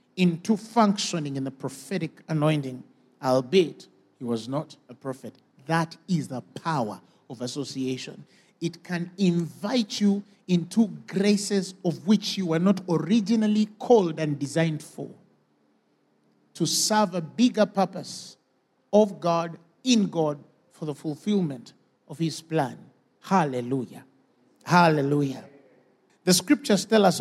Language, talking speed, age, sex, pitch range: English, 120 wpm, 50-69, male, 150-205 Hz